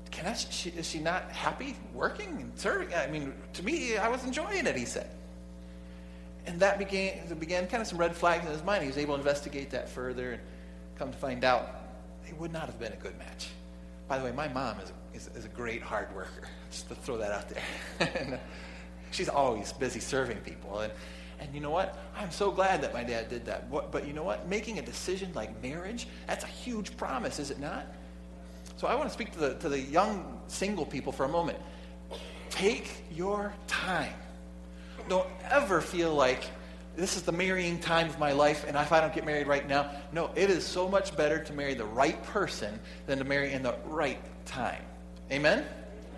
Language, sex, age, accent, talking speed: English, male, 30-49, American, 205 wpm